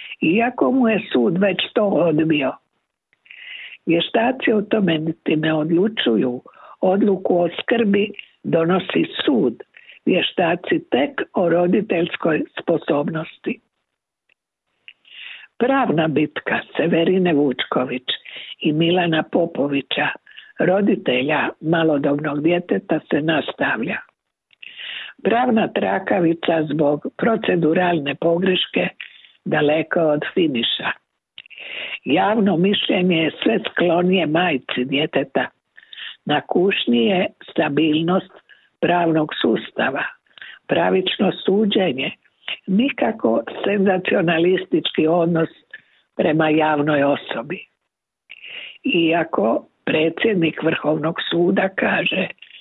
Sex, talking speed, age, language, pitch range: female, 75 wpm, 60-79, Croatian, 155-205 Hz